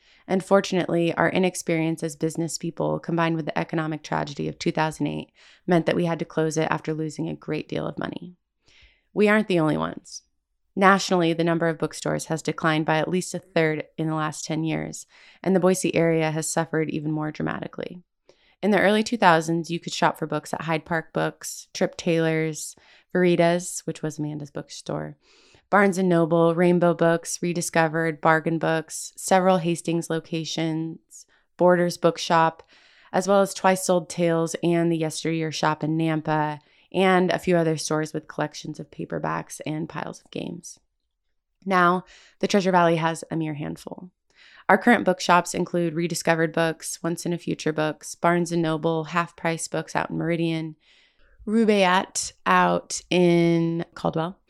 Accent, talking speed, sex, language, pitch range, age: American, 160 wpm, female, English, 155-175 Hz, 20-39